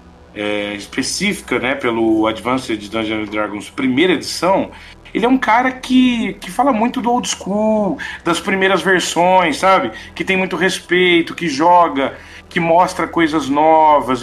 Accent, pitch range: Brazilian, 120-200 Hz